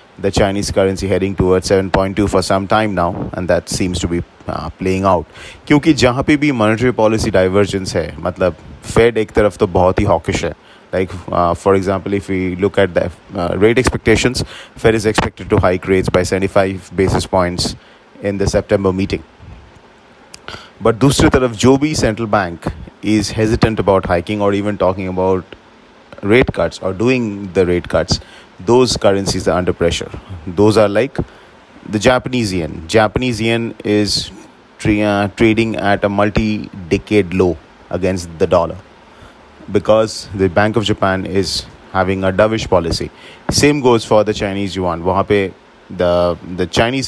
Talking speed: 150 wpm